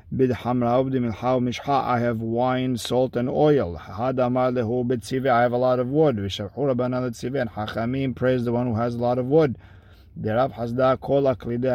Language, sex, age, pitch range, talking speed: English, male, 50-69, 105-135 Hz, 105 wpm